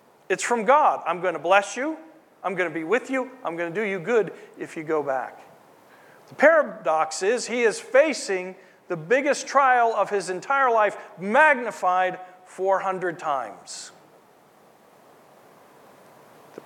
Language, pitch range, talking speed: English, 165-255 Hz, 150 wpm